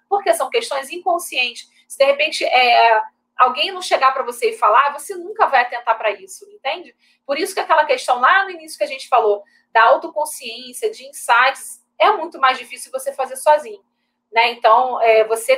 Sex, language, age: female, Portuguese, 30-49